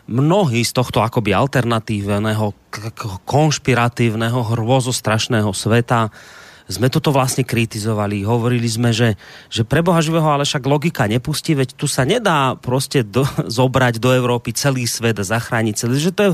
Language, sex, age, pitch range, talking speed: Slovak, male, 30-49, 120-170 Hz, 150 wpm